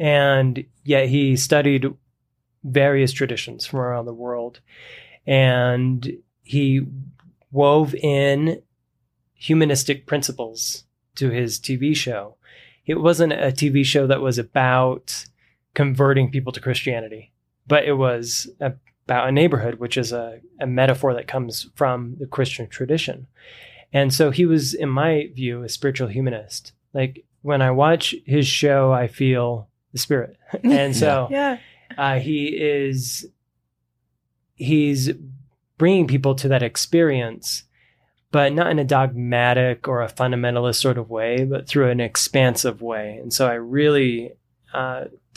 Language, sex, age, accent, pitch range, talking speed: English, male, 20-39, American, 120-140 Hz, 130 wpm